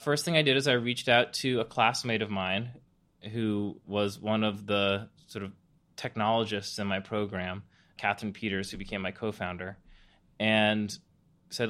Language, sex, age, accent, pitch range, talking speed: English, male, 20-39, American, 105-140 Hz, 165 wpm